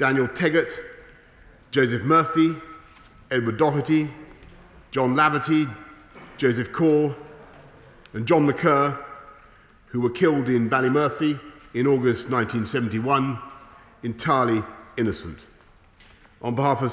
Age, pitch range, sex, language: 40-59, 115-140 Hz, male, English